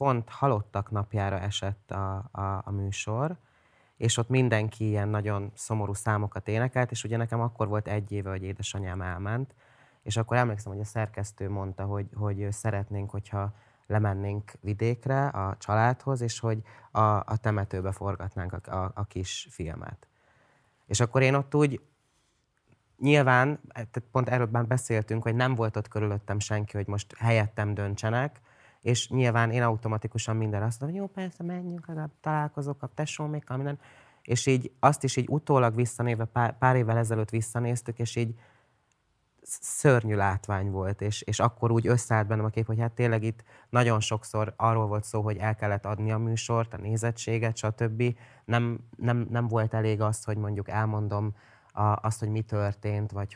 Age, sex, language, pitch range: 30-49, male, Hungarian, 105-120 Hz